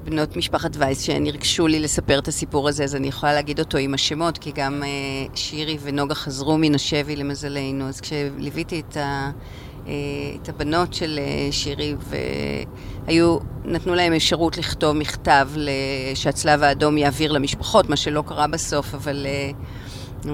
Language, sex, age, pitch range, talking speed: Hebrew, female, 40-59, 140-165 Hz, 150 wpm